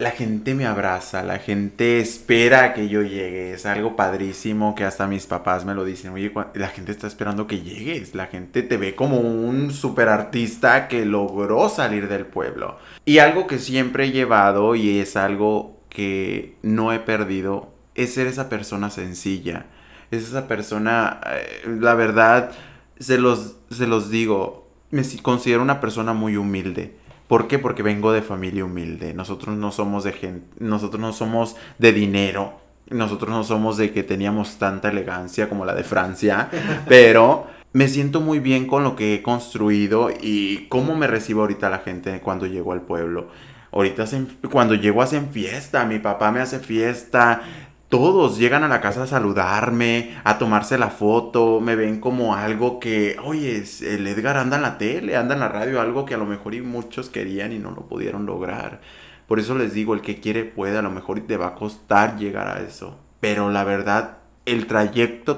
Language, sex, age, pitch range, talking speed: Spanish, male, 20-39, 100-120 Hz, 180 wpm